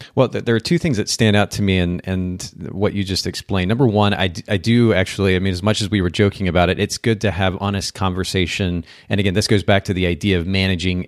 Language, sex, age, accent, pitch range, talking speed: English, male, 30-49, American, 90-110 Hz, 260 wpm